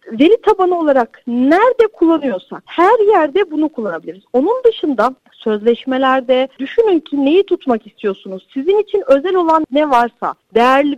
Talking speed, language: 130 wpm, Turkish